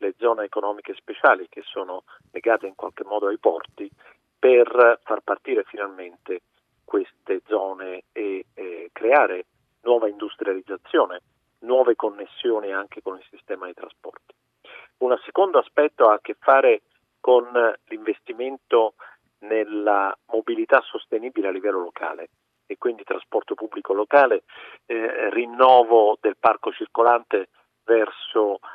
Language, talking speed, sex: Italian, 120 wpm, male